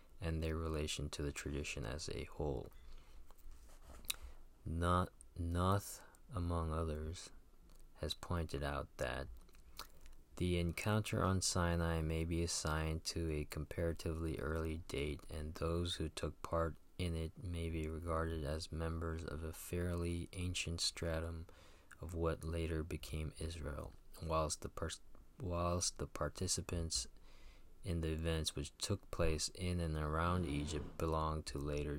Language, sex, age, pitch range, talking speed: English, male, 20-39, 75-85 Hz, 125 wpm